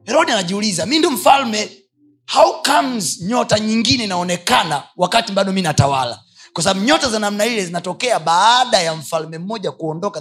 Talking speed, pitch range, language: 145 wpm, 135-205 Hz, Swahili